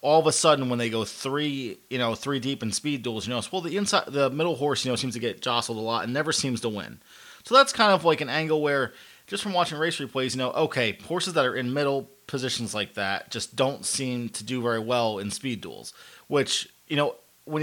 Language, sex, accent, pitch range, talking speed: English, male, American, 115-145 Hz, 250 wpm